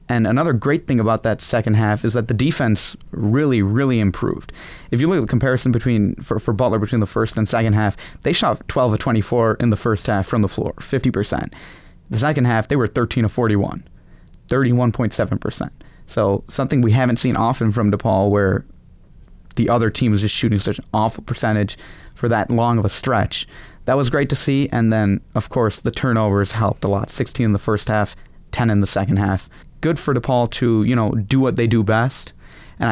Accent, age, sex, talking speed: American, 30-49, male, 200 wpm